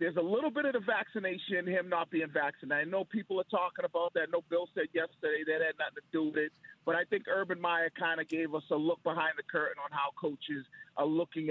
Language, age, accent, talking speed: English, 40-59, American, 250 wpm